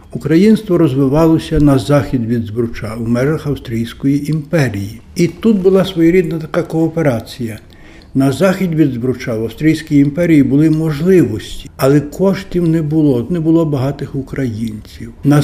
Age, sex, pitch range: 60-79, male, 125-160 Hz